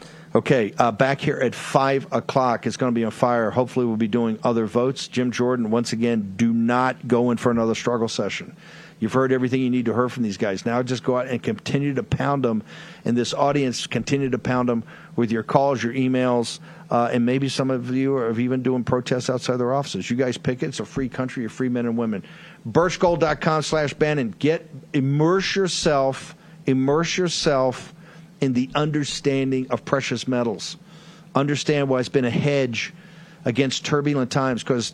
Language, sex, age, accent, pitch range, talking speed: English, male, 50-69, American, 120-155 Hz, 190 wpm